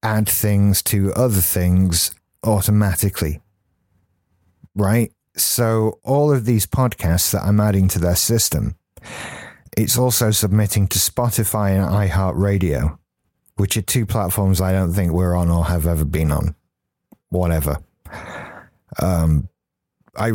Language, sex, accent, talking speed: English, male, British, 125 wpm